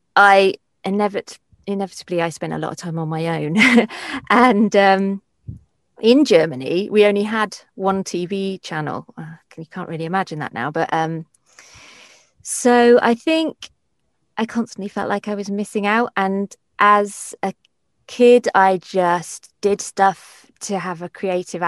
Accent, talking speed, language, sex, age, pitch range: British, 145 wpm, English, female, 30-49, 175-225 Hz